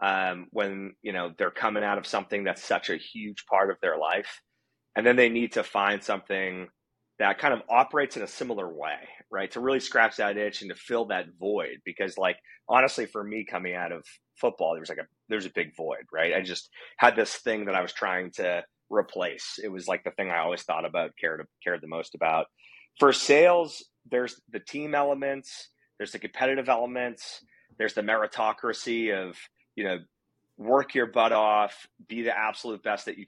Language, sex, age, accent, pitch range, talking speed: English, male, 30-49, American, 95-115 Hz, 200 wpm